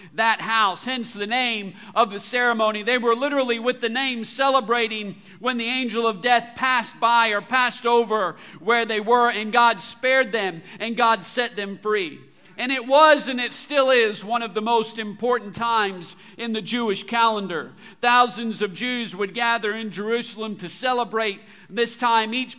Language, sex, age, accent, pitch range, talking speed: English, male, 50-69, American, 210-240 Hz, 175 wpm